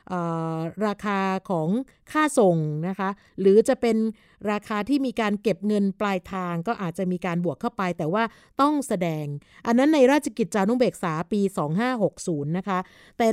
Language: Thai